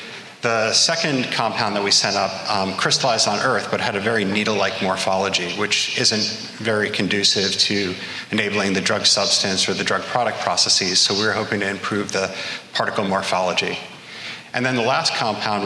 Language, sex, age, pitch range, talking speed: English, male, 30-49, 100-125 Hz, 175 wpm